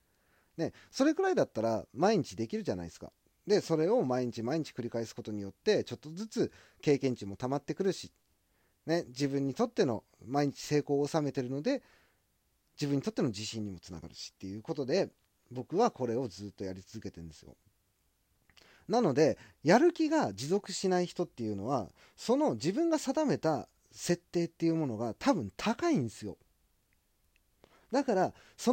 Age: 40-59